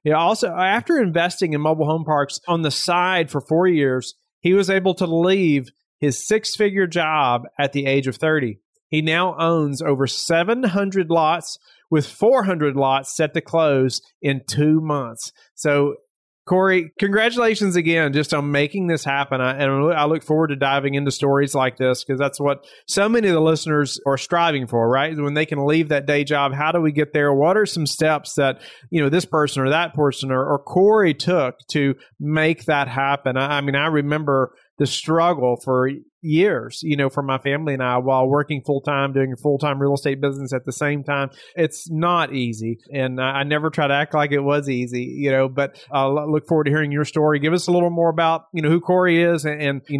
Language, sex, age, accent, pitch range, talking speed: English, male, 40-59, American, 140-165 Hz, 205 wpm